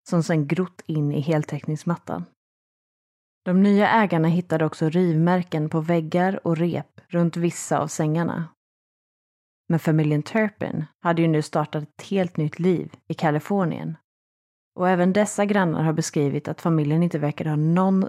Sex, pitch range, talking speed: female, 155-185 Hz, 150 wpm